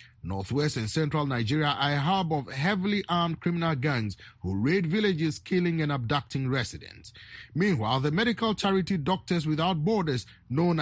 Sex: male